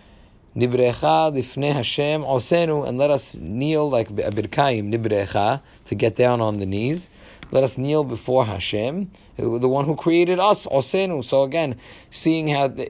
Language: English